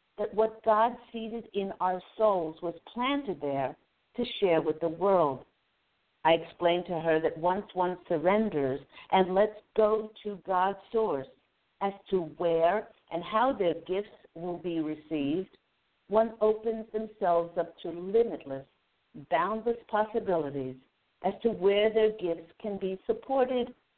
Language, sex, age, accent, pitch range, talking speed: English, female, 60-79, American, 170-225 Hz, 140 wpm